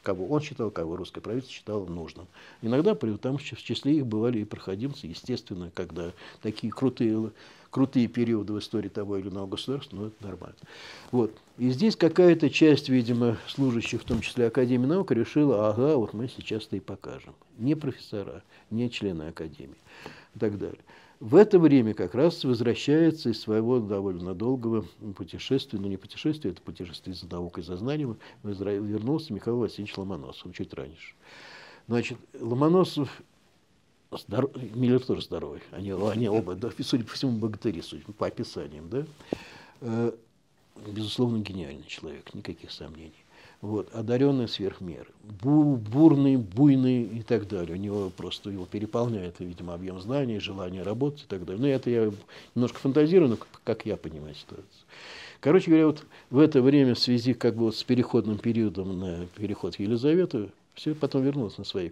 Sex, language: male, Russian